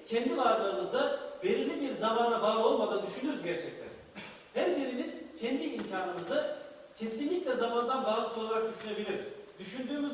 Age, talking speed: 40-59, 110 wpm